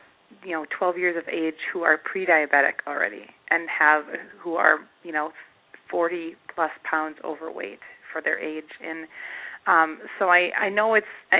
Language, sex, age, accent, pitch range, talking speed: English, female, 30-49, American, 160-180 Hz, 155 wpm